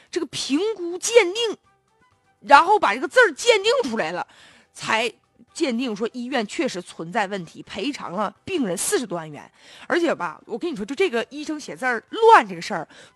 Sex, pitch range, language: female, 220-320 Hz, Chinese